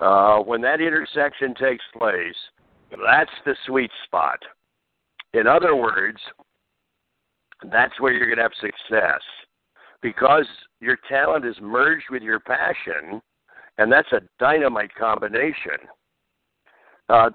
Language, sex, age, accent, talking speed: English, male, 60-79, American, 120 wpm